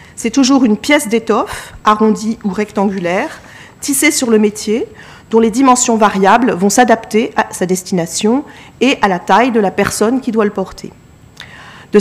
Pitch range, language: 185-240 Hz, French